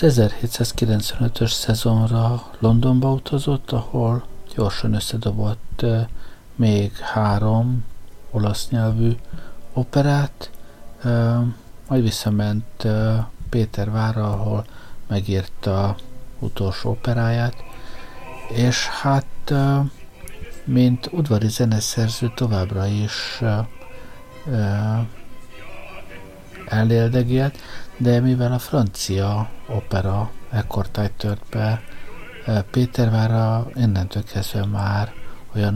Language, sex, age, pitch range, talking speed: Hungarian, male, 60-79, 100-120 Hz, 70 wpm